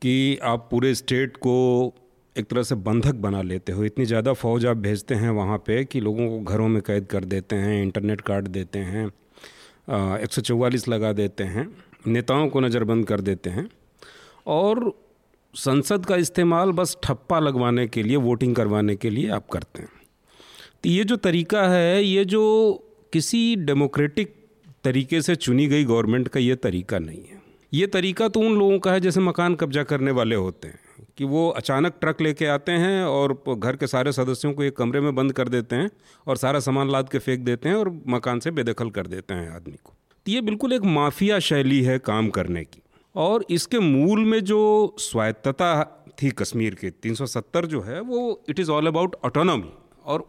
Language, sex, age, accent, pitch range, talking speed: Hindi, male, 40-59, native, 115-175 Hz, 190 wpm